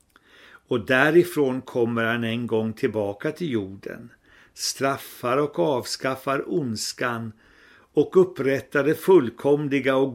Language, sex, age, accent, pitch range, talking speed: Swedish, male, 60-79, native, 115-160 Hz, 105 wpm